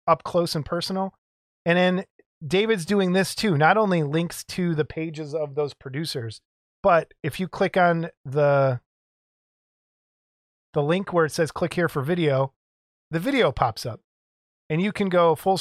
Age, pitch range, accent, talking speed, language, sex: 20-39, 135-175 Hz, American, 165 wpm, English, male